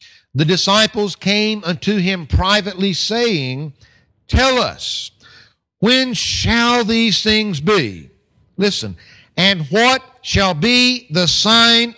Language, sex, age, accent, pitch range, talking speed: English, male, 60-79, American, 195-245 Hz, 105 wpm